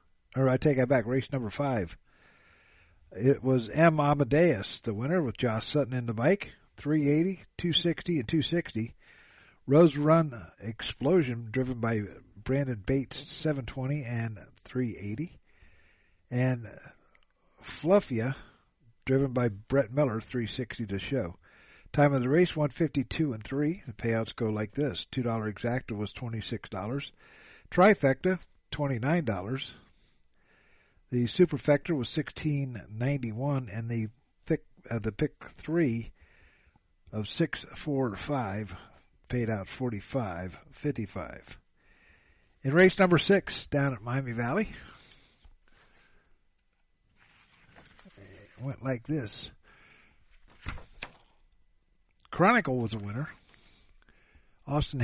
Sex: male